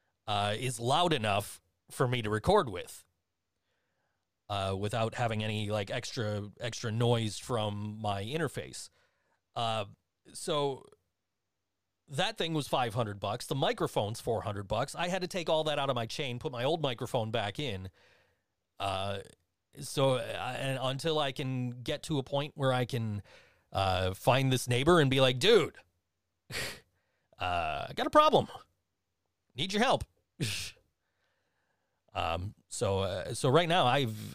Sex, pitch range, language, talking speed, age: male, 100-130 Hz, English, 145 wpm, 30-49